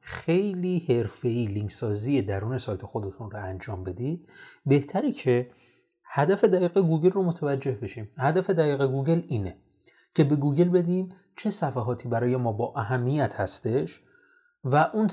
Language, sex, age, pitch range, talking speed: Persian, male, 30-49, 115-160 Hz, 135 wpm